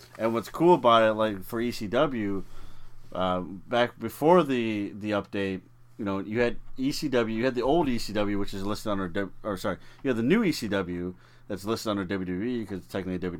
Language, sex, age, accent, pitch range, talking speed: English, male, 30-49, American, 95-120 Hz, 190 wpm